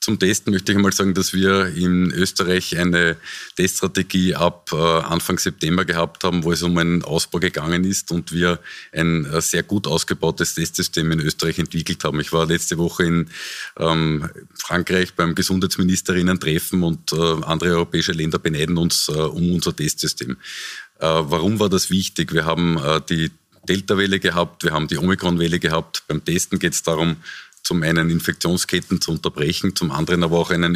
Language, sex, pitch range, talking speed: German, male, 80-90 Hz, 160 wpm